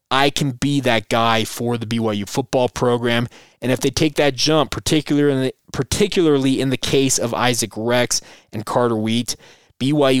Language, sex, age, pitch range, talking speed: English, male, 20-39, 115-150 Hz, 160 wpm